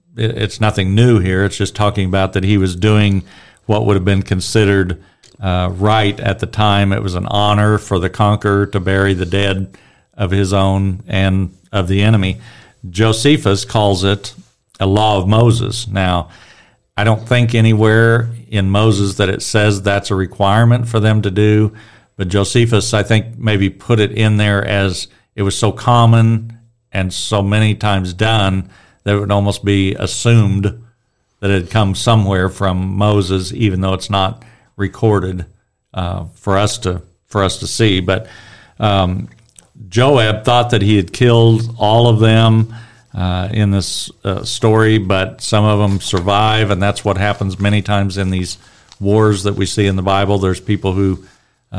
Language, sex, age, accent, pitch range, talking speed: English, male, 50-69, American, 95-110 Hz, 170 wpm